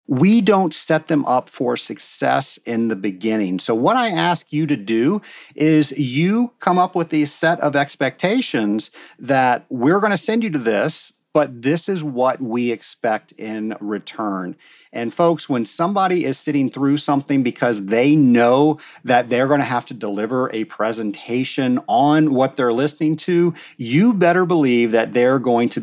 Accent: American